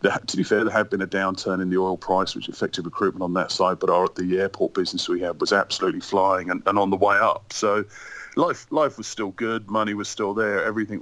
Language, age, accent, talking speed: English, 40-59, British, 250 wpm